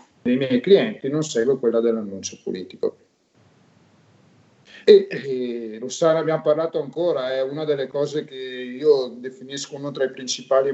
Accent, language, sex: native, Italian, male